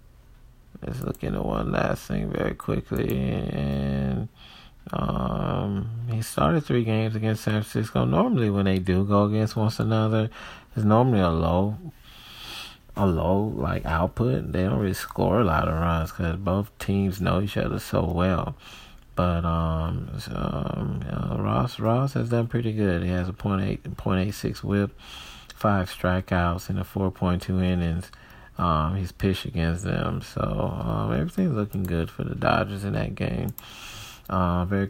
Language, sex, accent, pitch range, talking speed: English, male, American, 90-110 Hz, 165 wpm